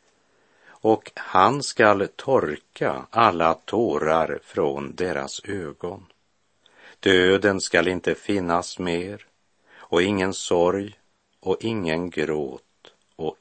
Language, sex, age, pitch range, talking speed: Swedish, male, 50-69, 85-105 Hz, 95 wpm